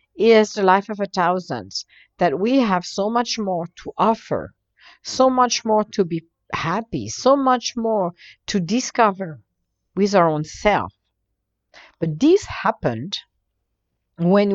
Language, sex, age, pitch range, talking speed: English, female, 60-79, 165-230 Hz, 135 wpm